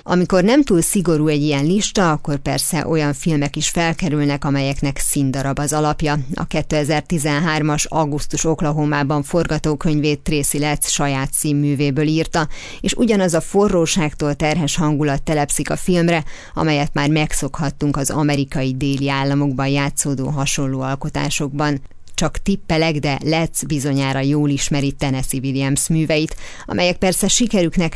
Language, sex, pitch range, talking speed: Hungarian, female, 145-170 Hz, 125 wpm